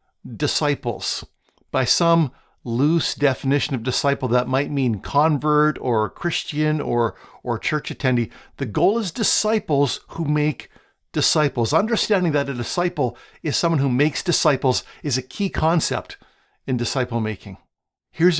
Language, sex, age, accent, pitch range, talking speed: English, male, 50-69, American, 125-160 Hz, 135 wpm